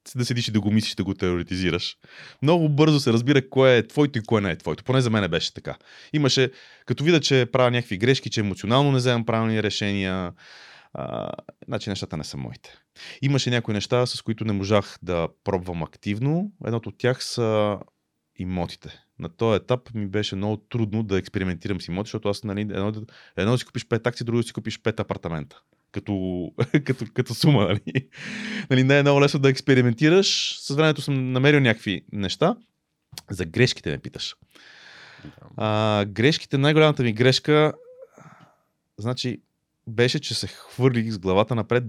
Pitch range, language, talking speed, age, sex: 100-130 Hz, Bulgarian, 170 wpm, 30-49, male